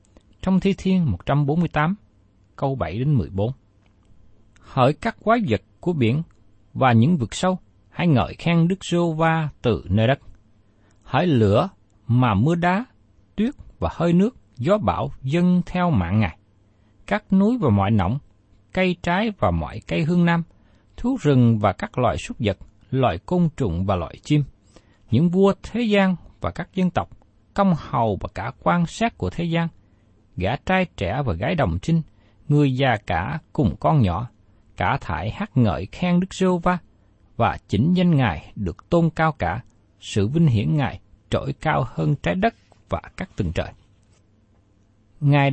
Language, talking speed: Vietnamese, 165 wpm